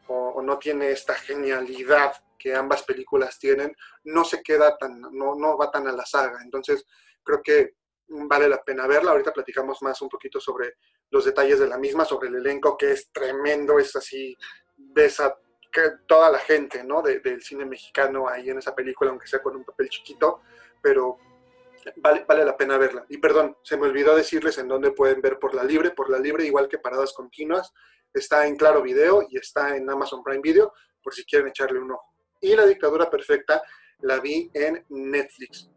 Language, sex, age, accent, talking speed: Spanish, male, 30-49, Mexican, 195 wpm